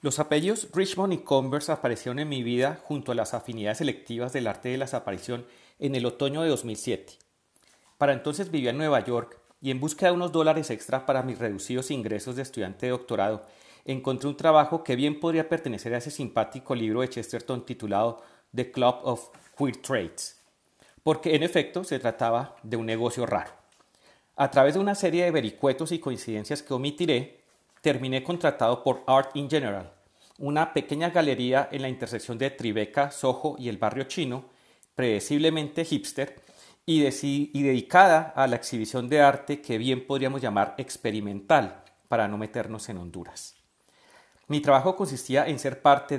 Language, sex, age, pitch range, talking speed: Spanish, male, 40-59, 120-150 Hz, 170 wpm